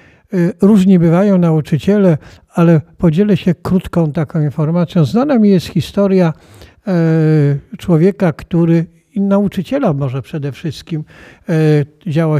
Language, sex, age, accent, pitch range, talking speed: Polish, male, 50-69, native, 150-175 Hz, 100 wpm